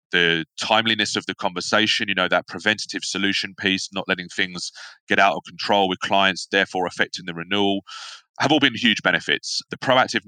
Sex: male